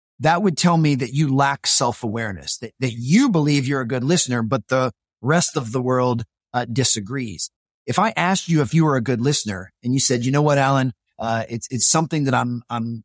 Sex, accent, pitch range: male, American, 115-145 Hz